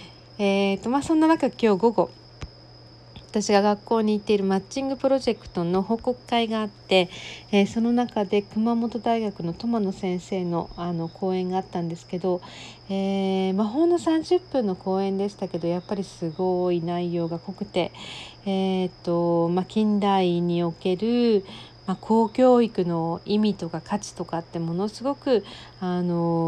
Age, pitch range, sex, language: 40-59, 175-215 Hz, female, Japanese